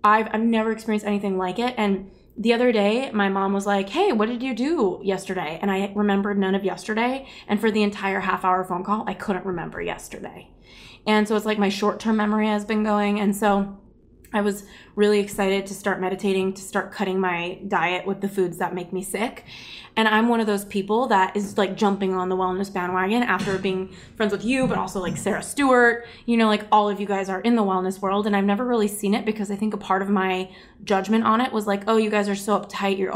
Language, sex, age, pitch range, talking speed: English, female, 20-39, 195-225 Hz, 235 wpm